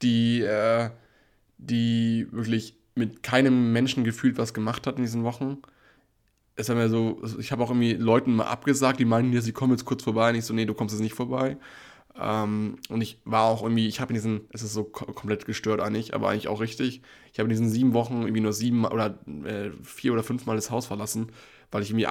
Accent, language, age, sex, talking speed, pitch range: German, German, 20-39, male, 215 wpm, 110-125 Hz